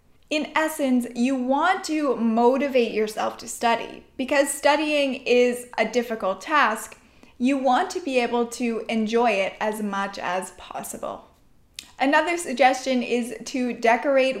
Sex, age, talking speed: female, 10-29, 135 wpm